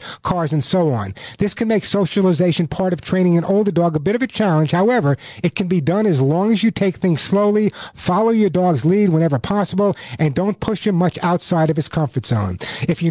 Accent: American